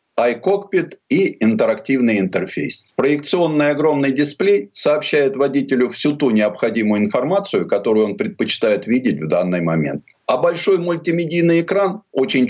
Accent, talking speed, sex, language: native, 120 wpm, male, Russian